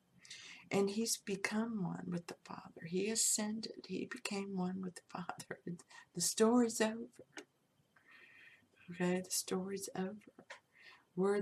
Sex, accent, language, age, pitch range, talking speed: female, American, English, 60-79, 170-200 Hz, 120 wpm